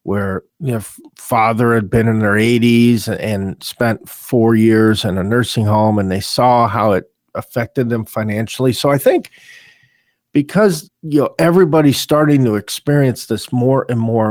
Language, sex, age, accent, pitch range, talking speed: English, male, 50-69, American, 110-140 Hz, 165 wpm